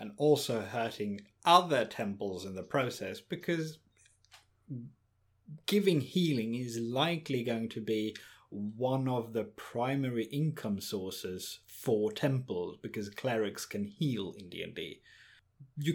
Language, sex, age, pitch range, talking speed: English, male, 30-49, 105-145 Hz, 115 wpm